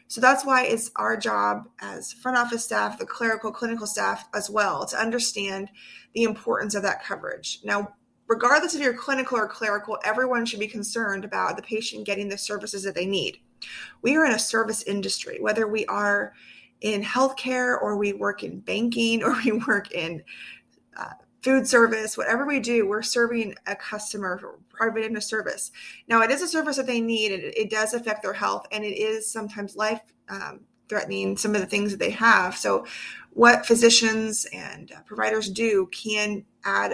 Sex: female